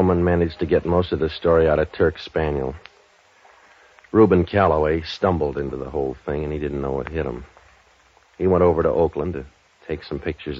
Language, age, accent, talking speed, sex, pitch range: English, 60-79, American, 195 wpm, male, 70-80 Hz